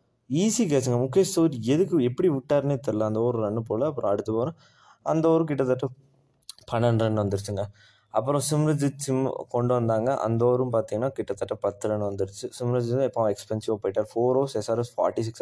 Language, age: Tamil, 20-39